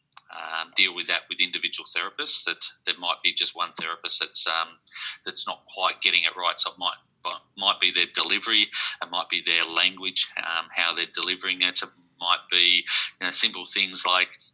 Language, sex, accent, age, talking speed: English, male, Australian, 30-49, 195 wpm